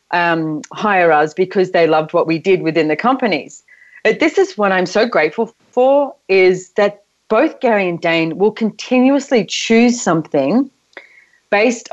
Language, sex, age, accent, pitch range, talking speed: English, female, 30-49, Australian, 165-215 Hz, 150 wpm